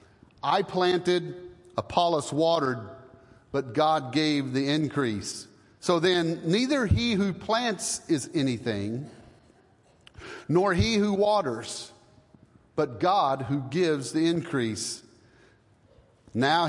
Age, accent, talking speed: 40-59, American, 100 wpm